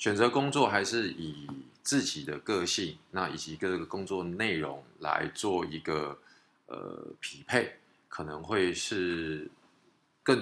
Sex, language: male, Chinese